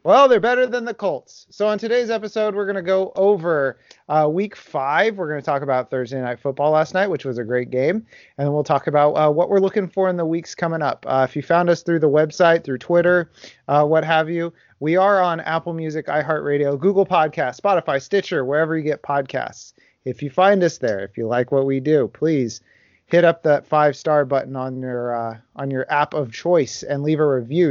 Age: 30-49